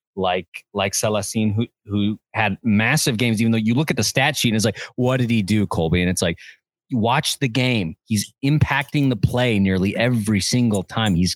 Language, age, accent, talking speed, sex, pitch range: English, 30-49, American, 205 wpm, male, 105-140 Hz